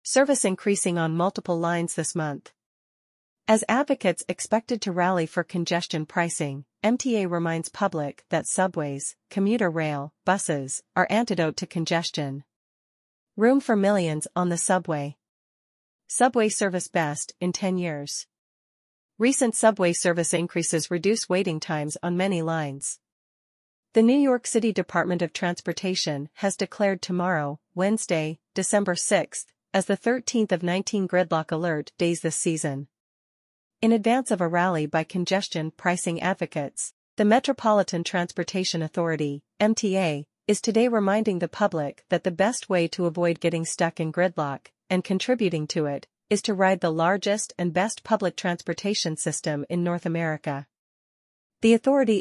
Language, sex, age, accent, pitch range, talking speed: English, female, 40-59, American, 165-200 Hz, 140 wpm